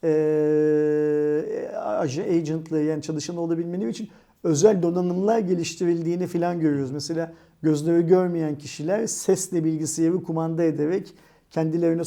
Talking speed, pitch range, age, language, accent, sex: 95 wpm, 155-180 Hz, 50-69, Turkish, native, male